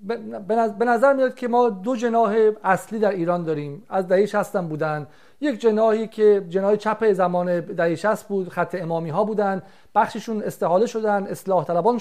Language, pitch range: Persian, 190-235 Hz